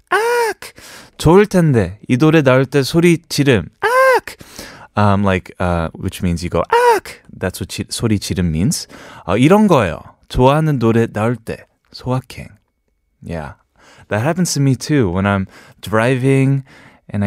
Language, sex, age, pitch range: Korean, male, 20-39, 95-155 Hz